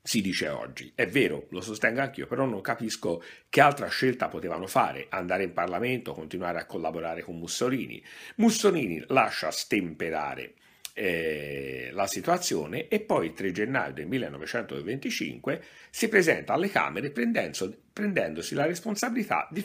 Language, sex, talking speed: Italian, male, 135 wpm